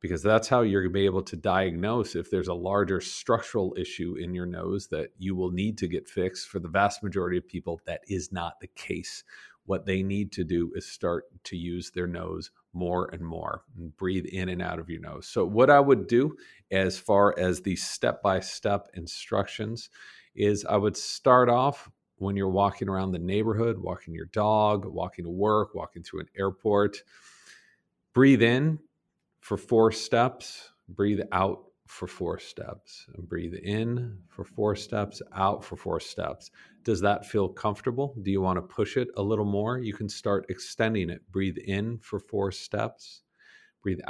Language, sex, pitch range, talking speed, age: English, male, 90-105 Hz, 180 wpm, 50-69